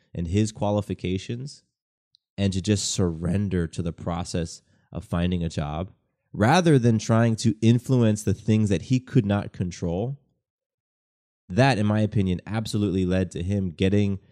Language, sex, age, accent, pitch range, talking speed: English, male, 20-39, American, 90-115 Hz, 145 wpm